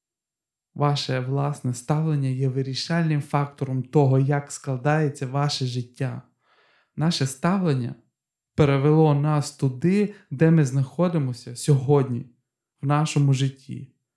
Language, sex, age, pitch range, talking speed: Ukrainian, male, 20-39, 130-150 Hz, 95 wpm